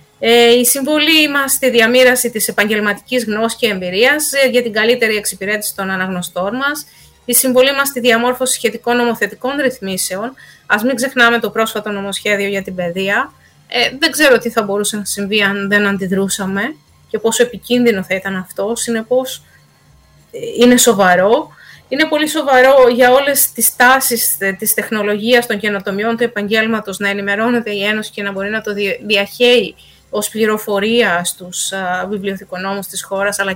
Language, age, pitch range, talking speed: Greek, 20-39, 200-250 Hz, 150 wpm